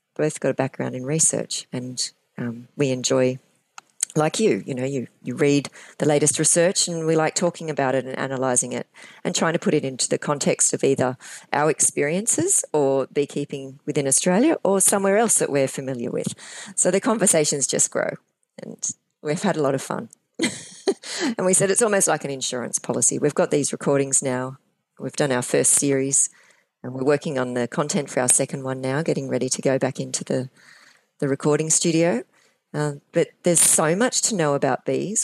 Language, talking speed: English, 190 wpm